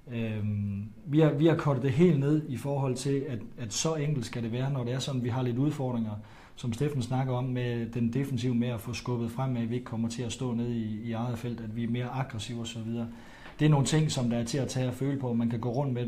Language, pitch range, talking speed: Danish, 115-135 Hz, 295 wpm